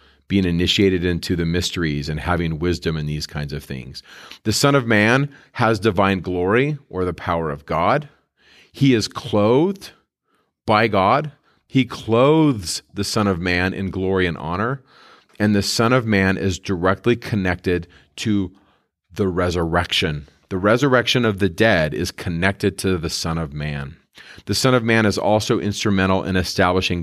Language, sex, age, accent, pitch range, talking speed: English, male, 40-59, American, 90-110 Hz, 160 wpm